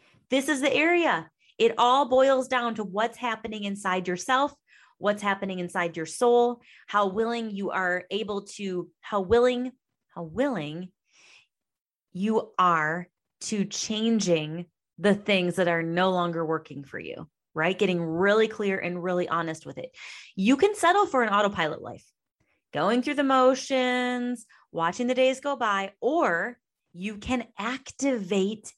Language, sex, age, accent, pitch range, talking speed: English, female, 30-49, American, 185-240 Hz, 145 wpm